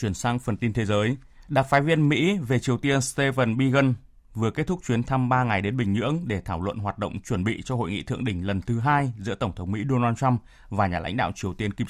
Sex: male